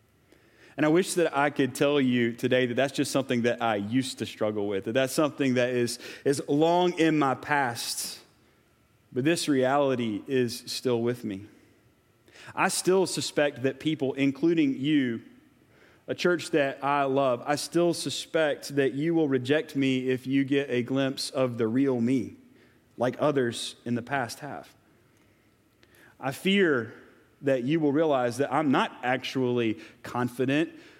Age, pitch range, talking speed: 30-49, 120-155 Hz, 160 wpm